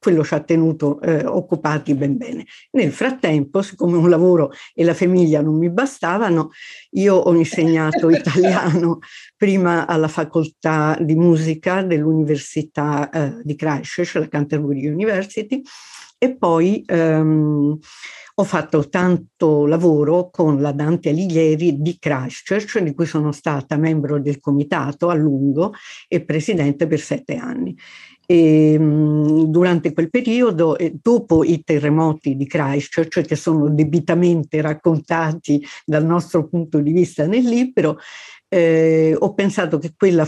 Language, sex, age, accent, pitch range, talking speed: Italian, female, 50-69, native, 150-175 Hz, 135 wpm